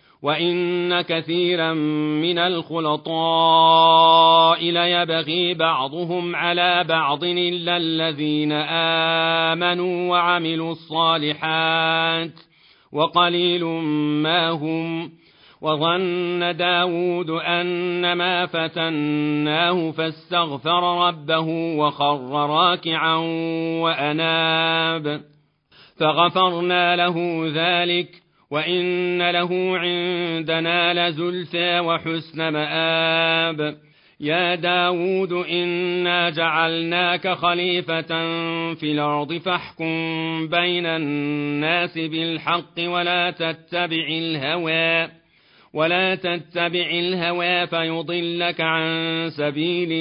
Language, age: Arabic, 40-59